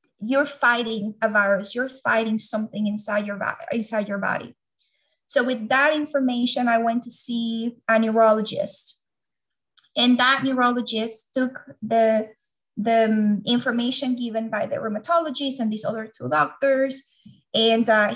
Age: 30-49